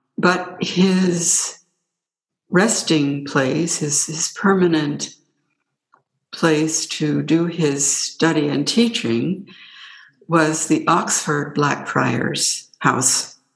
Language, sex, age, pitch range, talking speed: English, female, 60-79, 150-180 Hz, 90 wpm